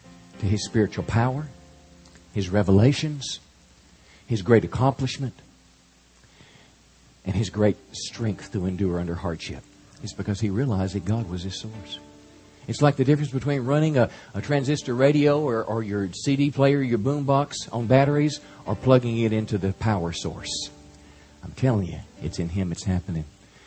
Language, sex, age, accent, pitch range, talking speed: English, male, 50-69, American, 95-125 Hz, 150 wpm